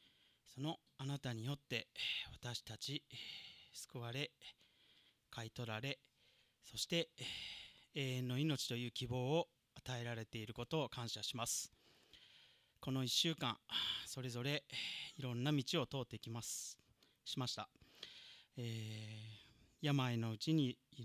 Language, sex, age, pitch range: Japanese, male, 30-49, 115-135 Hz